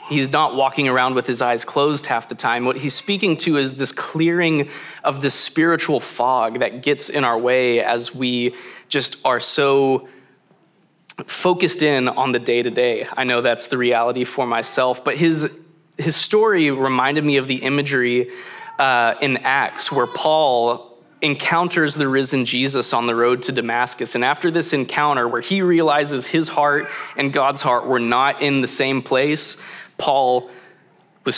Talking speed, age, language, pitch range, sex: 165 wpm, 20-39, English, 125-150 Hz, male